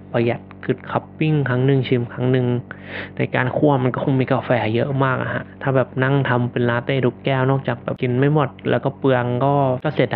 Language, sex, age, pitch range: Thai, male, 20-39, 120-135 Hz